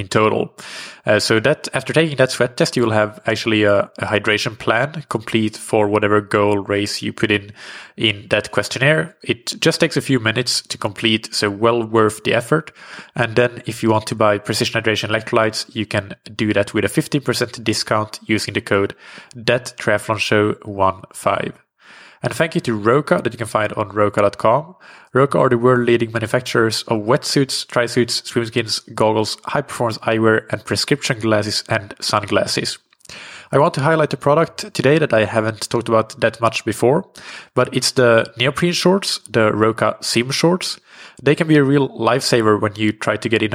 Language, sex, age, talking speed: English, male, 20-39, 180 wpm